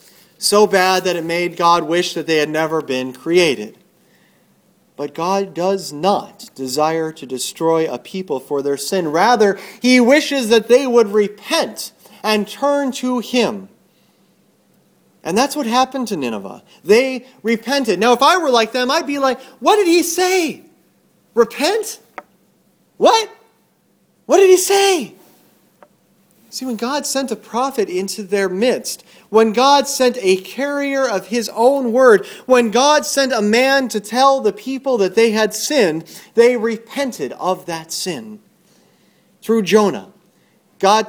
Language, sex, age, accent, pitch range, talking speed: English, male, 40-59, American, 190-260 Hz, 150 wpm